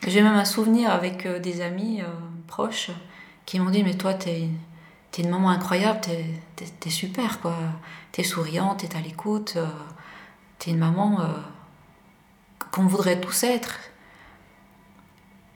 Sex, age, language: female, 30-49, French